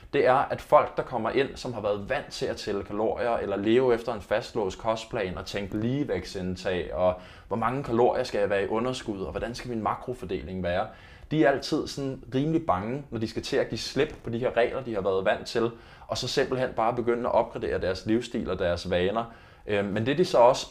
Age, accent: 20-39, native